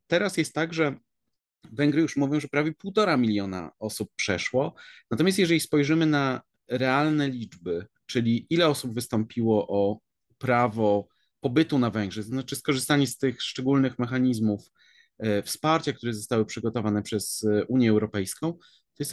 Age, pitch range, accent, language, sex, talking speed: 30-49, 110-145 Hz, native, Polish, male, 140 wpm